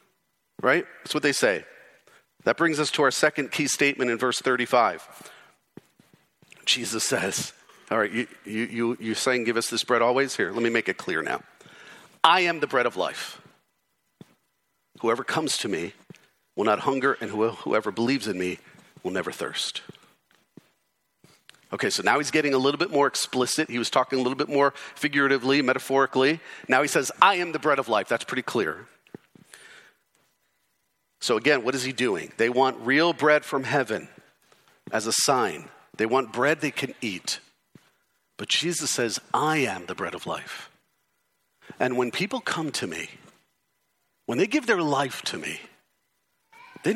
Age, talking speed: 40-59, 170 wpm